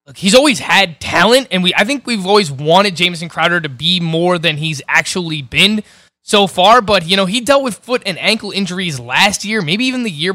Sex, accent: male, American